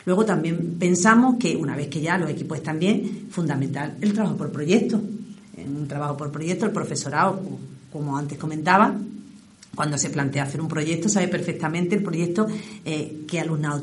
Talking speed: 175 wpm